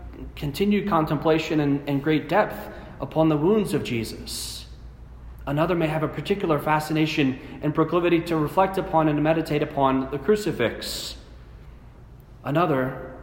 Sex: male